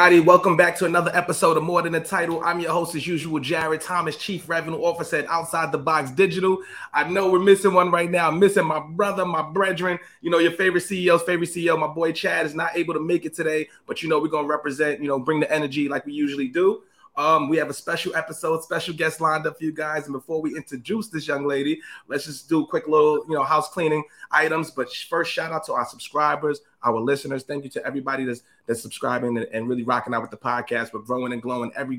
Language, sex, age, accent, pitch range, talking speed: English, male, 30-49, American, 140-170 Hz, 245 wpm